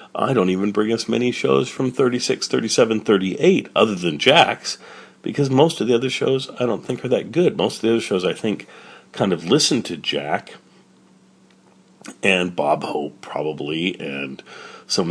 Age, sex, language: 40-59, male, English